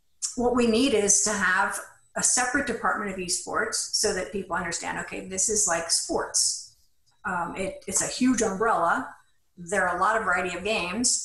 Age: 50-69